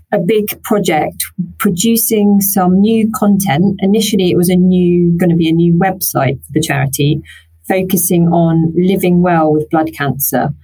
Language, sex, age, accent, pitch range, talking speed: English, female, 30-49, British, 160-180 Hz, 160 wpm